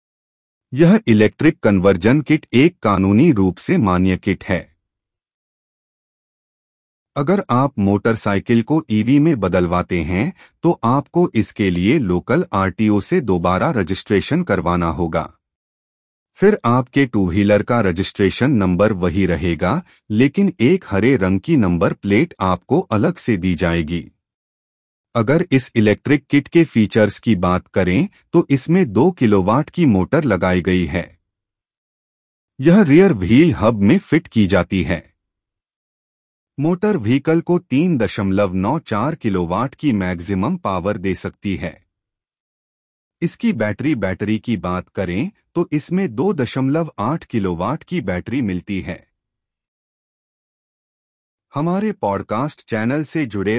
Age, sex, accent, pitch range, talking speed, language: 30-49, male, Indian, 90-145 Hz, 120 wpm, English